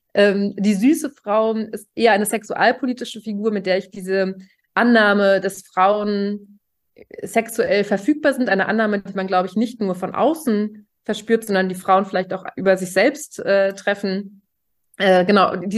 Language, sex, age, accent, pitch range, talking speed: German, female, 30-49, German, 195-230 Hz, 155 wpm